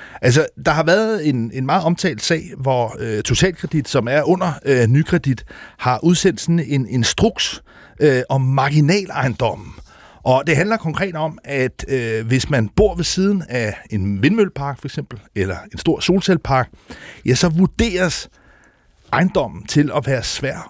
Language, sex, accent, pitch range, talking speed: Danish, male, native, 130-180 Hz, 155 wpm